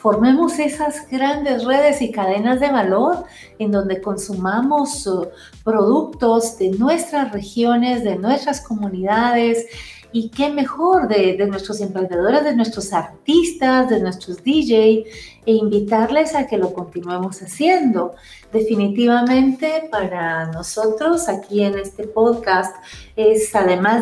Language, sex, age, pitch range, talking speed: Spanish, female, 40-59, 205-265 Hz, 115 wpm